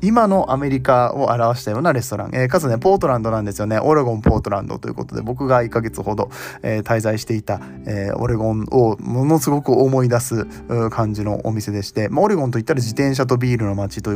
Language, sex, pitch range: Japanese, male, 110-145 Hz